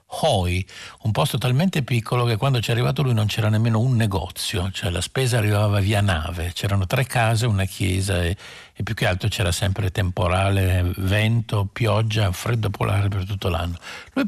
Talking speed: 180 wpm